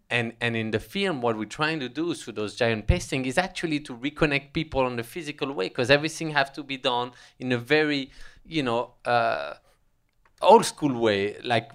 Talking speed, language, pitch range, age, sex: 205 wpm, English, 110-140 Hz, 20-39, male